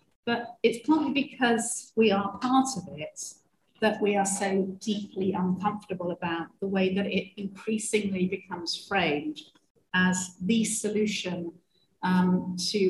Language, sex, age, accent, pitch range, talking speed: English, female, 40-59, British, 185-220 Hz, 130 wpm